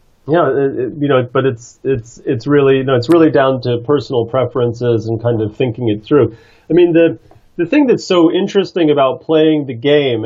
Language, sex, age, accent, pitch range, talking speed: English, male, 40-59, American, 120-160 Hz, 215 wpm